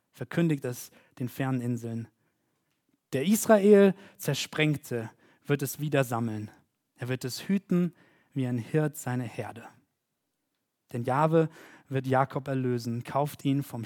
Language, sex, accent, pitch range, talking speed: German, male, German, 125-150 Hz, 125 wpm